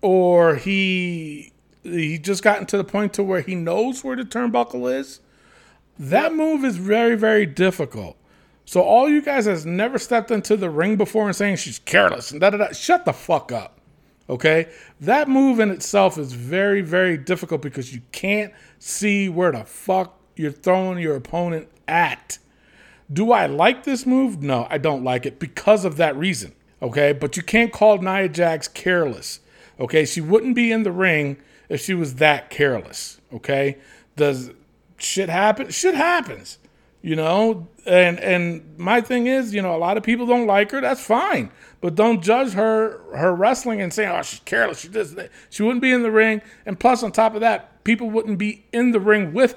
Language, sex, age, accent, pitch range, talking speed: English, male, 40-59, American, 165-230 Hz, 190 wpm